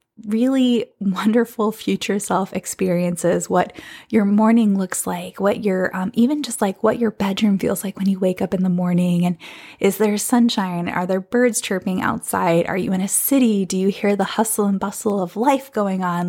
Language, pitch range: English, 190-225 Hz